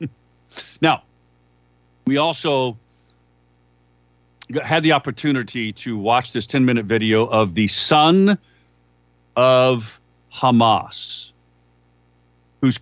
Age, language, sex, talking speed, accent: 50-69, English, male, 85 wpm, American